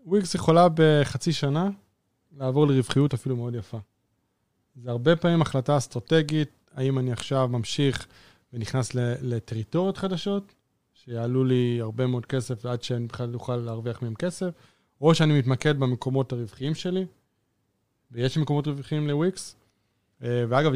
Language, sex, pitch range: Hebrew, male, 120-145 Hz